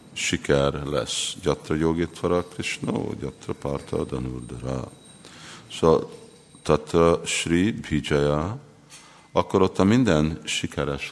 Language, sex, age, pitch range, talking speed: Hungarian, male, 50-69, 70-80 Hz, 90 wpm